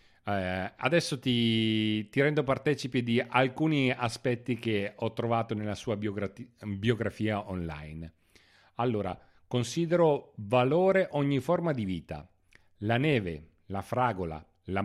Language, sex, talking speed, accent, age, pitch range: Italian, male, 115 wpm, native, 40-59, 95-130 Hz